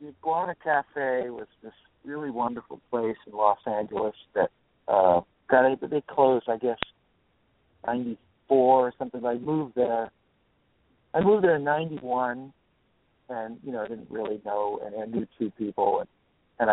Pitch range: 115-140 Hz